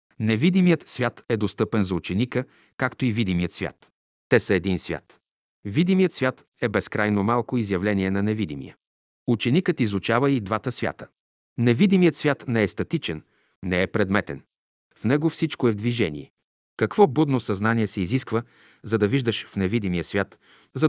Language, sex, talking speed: Bulgarian, male, 150 wpm